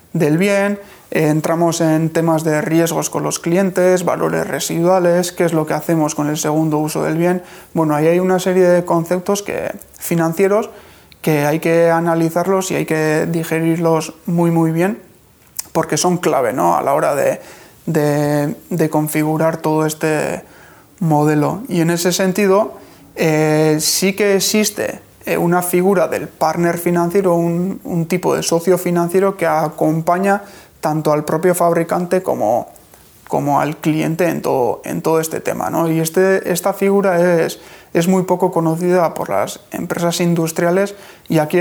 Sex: male